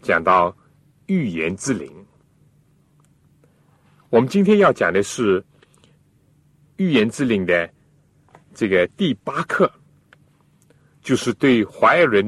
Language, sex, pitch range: Chinese, male, 105-150 Hz